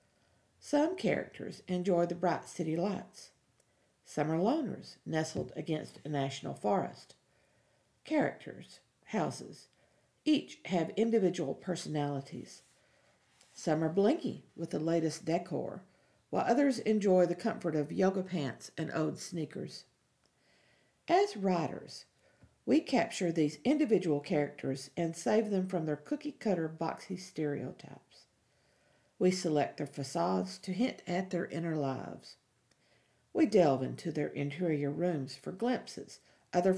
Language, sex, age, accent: English, female, 50-69, American